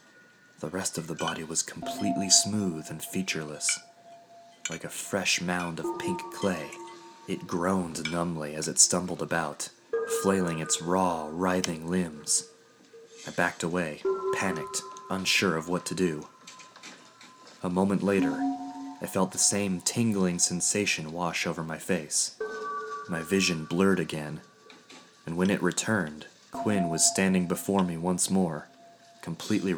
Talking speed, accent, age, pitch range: 135 wpm, American, 30-49, 85-105 Hz